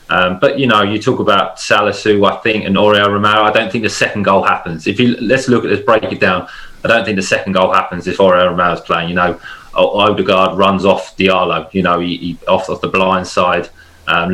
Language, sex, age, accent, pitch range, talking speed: English, male, 20-39, British, 90-105 Hz, 240 wpm